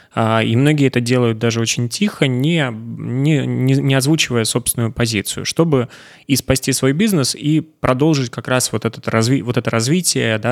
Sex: male